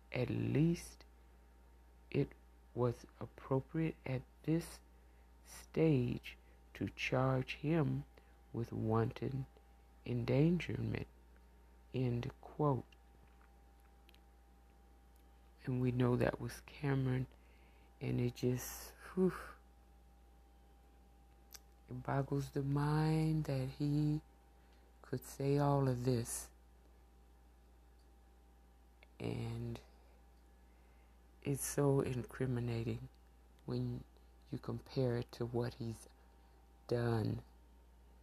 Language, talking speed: English, 75 wpm